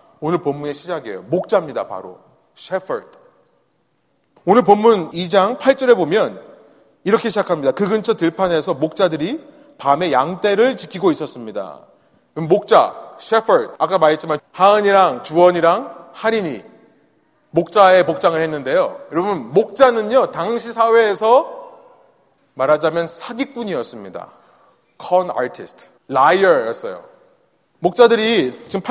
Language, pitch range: Korean, 170-245 Hz